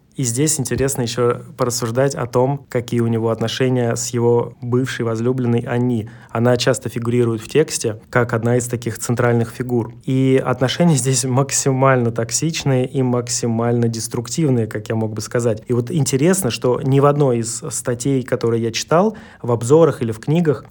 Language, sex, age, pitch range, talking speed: Russian, male, 20-39, 120-145 Hz, 165 wpm